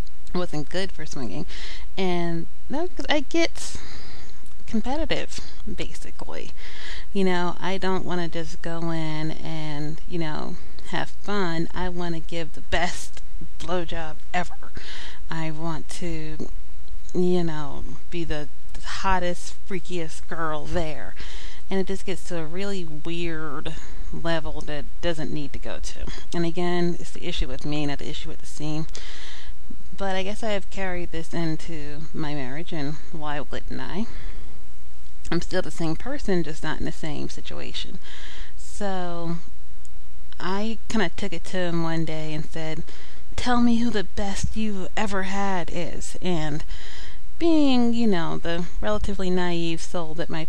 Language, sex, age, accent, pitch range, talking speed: English, female, 30-49, American, 150-185 Hz, 155 wpm